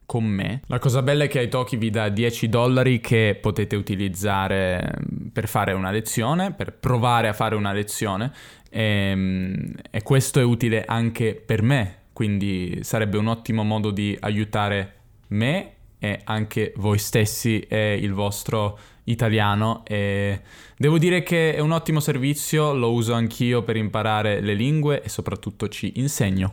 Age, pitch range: 10-29, 105-125 Hz